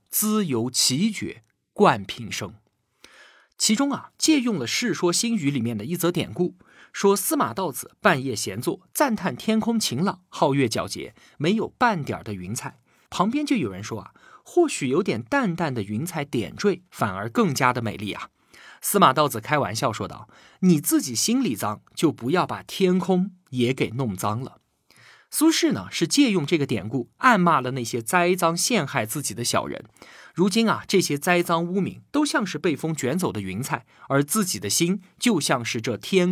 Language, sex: Chinese, male